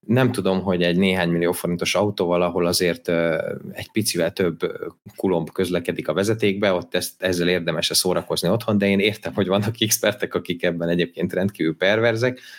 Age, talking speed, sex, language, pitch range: 30-49, 155 wpm, male, Hungarian, 90-115 Hz